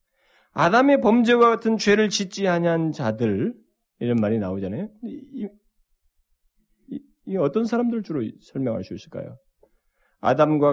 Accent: native